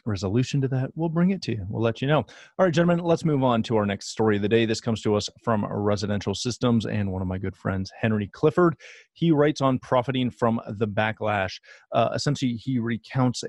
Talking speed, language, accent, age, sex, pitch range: 225 wpm, English, American, 30-49, male, 100-130 Hz